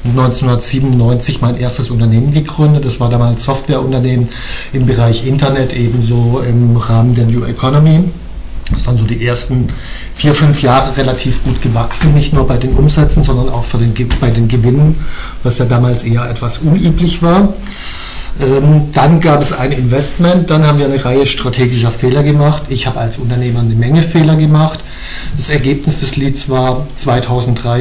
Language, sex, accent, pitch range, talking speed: English, male, German, 120-140 Hz, 160 wpm